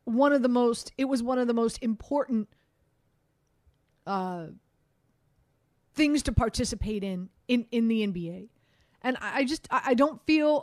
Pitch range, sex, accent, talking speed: 195-255 Hz, female, American, 160 wpm